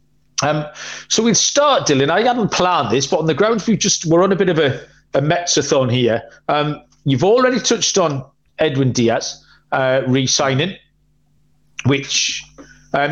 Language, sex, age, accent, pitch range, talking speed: English, male, 40-59, British, 135-175 Hz, 165 wpm